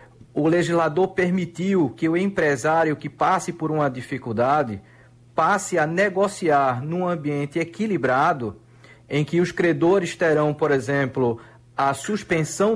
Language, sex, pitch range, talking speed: Portuguese, male, 140-180 Hz, 120 wpm